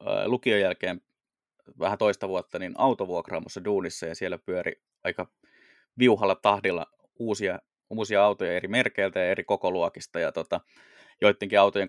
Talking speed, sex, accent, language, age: 130 wpm, male, native, Finnish, 20-39